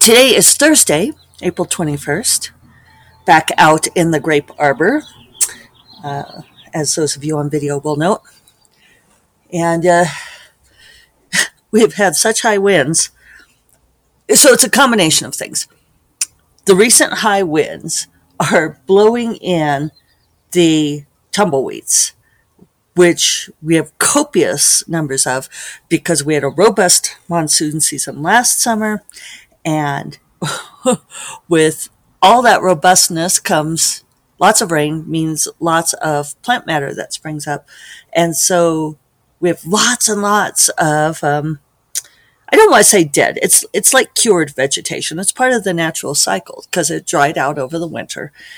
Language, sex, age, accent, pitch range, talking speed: English, female, 50-69, American, 150-195 Hz, 135 wpm